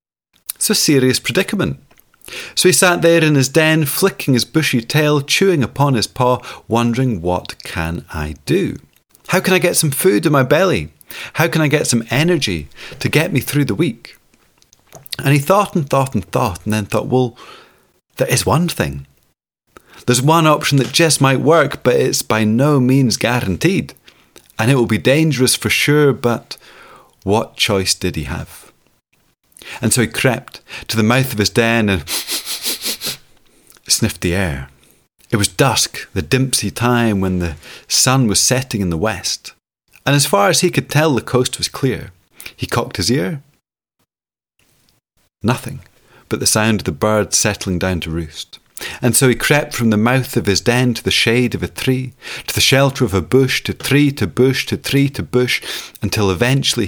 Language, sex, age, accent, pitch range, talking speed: English, male, 30-49, British, 105-145 Hz, 180 wpm